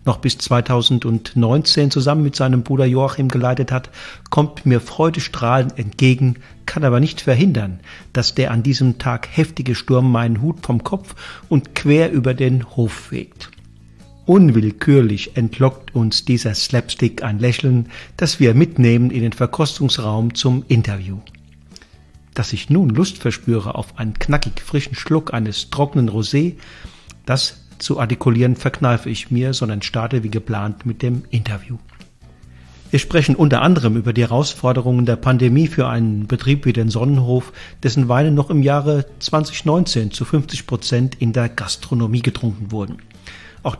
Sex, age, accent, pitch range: male, 50-69, German, 115-140 Hz